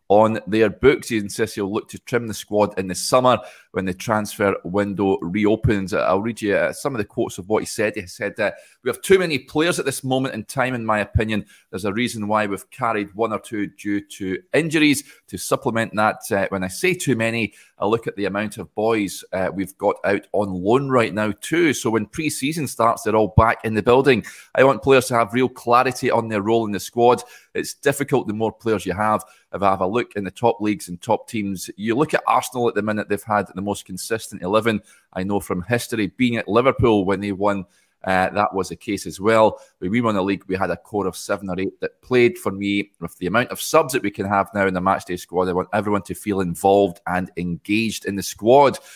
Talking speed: 240 wpm